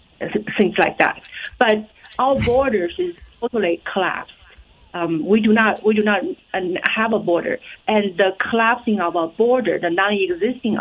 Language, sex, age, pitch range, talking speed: English, female, 40-59, 180-220 Hz, 155 wpm